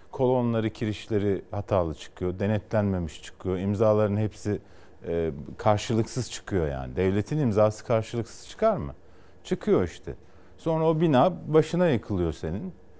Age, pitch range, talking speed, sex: 50-69, 95-120 Hz, 115 wpm, male